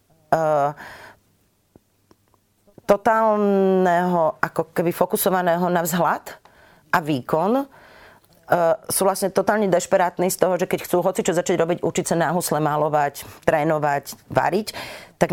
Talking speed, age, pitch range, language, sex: 105 wpm, 30-49, 155-185 Hz, Slovak, female